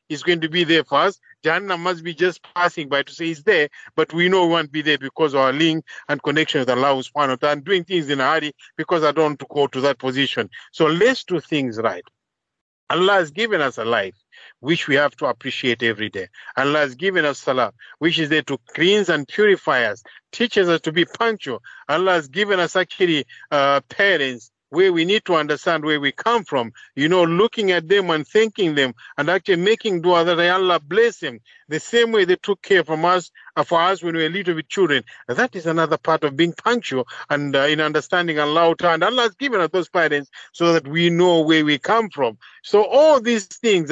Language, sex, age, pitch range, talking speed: English, male, 50-69, 155-195 Hz, 220 wpm